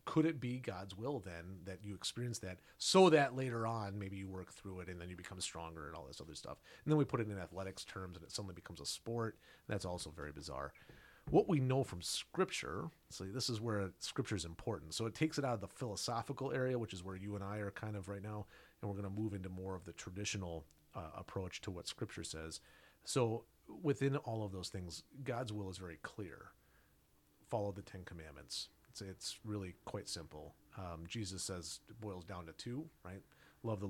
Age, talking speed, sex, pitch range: 40-59, 220 wpm, male, 90-115 Hz